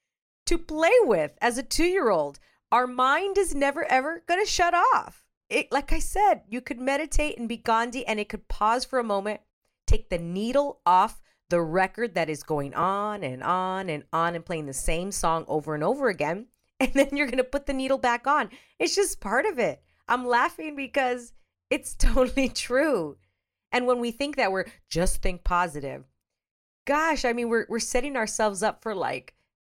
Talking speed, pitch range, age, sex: 190 wpm, 170-265 Hz, 40-59, female